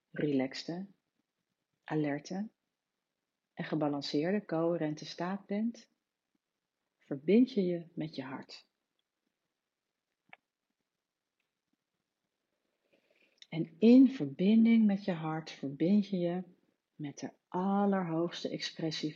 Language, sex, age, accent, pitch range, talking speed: Dutch, female, 40-59, Dutch, 150-190 Hz, 80 wpm